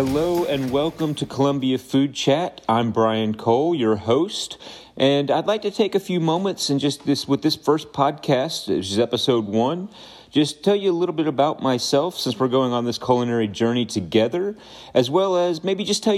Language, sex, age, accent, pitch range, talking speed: English, male, 40-59, American, 105-140 Hz, 195 wpm